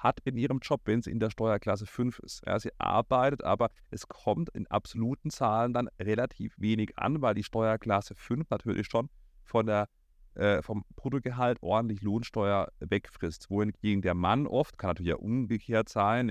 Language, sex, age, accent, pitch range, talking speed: German, male, 30-49, German, 105-125 Hz, 175 wpm